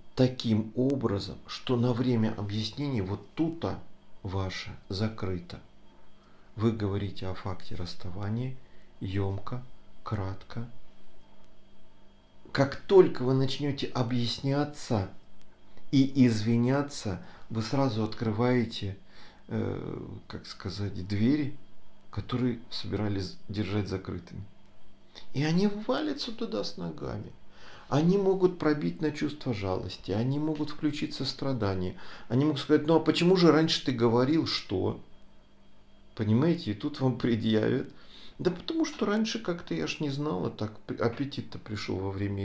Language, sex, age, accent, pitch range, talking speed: Russian, male, 40-59, native, 100-135 Hz, 115 wpm